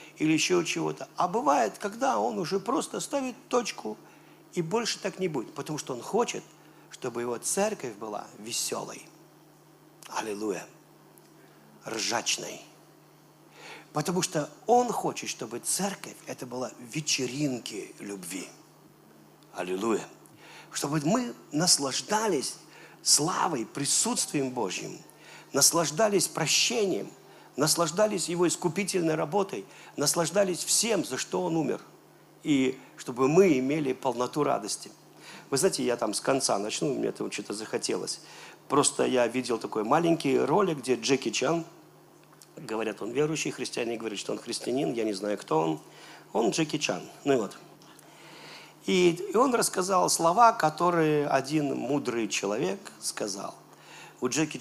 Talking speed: 125 wpm